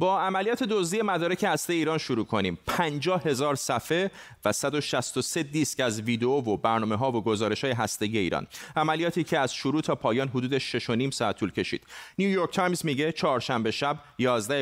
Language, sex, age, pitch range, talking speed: Persian, male, 30-49, 115-155 Hz, 170 wpm